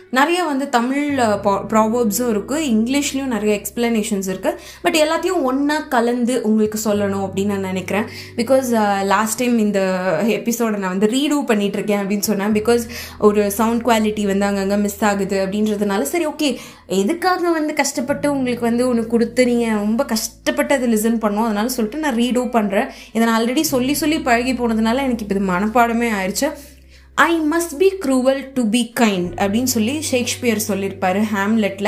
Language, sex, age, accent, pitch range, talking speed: Tamil, female, 20-39, native, 210-290 Hz, 150 wpm